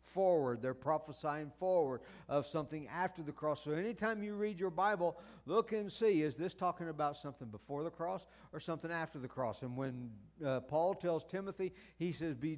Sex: male